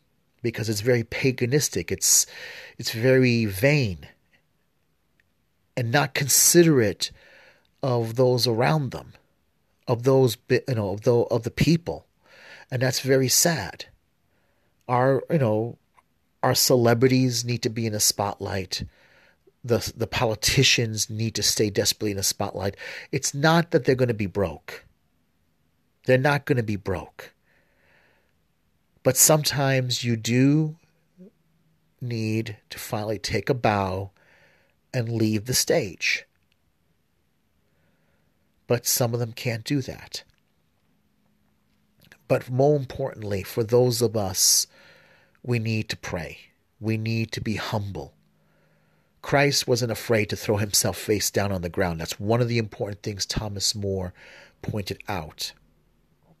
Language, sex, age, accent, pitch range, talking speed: English, male, 40-59, American, 100-130 Hz, 125 wpm